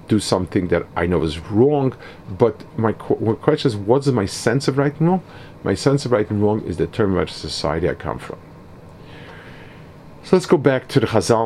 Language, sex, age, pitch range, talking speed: English, male, 50-69, 95-135 Hz, 210 wpm